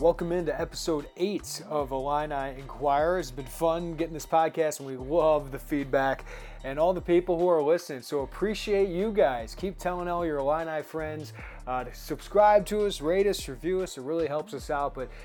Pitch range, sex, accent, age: 145-180 Hz, male, American, 30-49